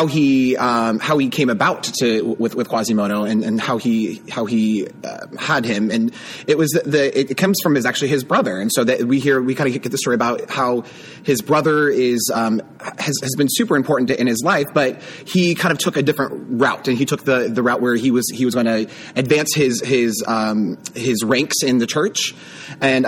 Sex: male